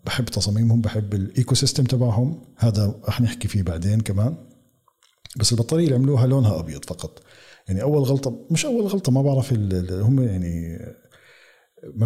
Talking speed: 150 wpm